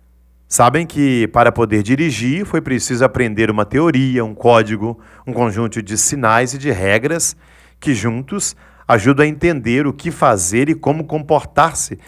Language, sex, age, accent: Portuguese, male, 40-59, Brazilian